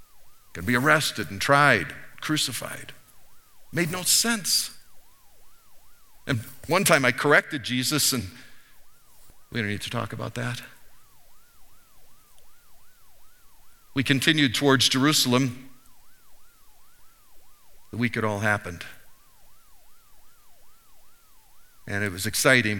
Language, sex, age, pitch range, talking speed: English, male, 50-69, 120-180 Hz, 95 wpm